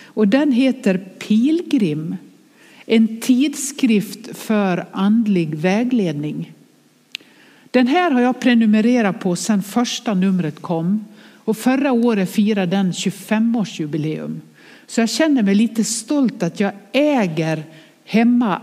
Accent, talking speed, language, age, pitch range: Swedish, 115 wpm, English, 60-79, 180-240 Hz